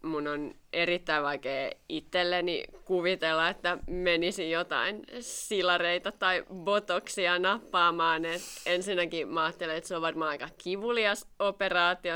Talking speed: 115 wpm